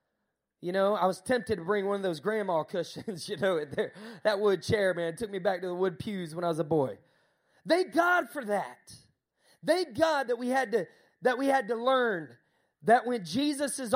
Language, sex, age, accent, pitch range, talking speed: English, male, 30-49, American, 190-265 Hz, 200 wpm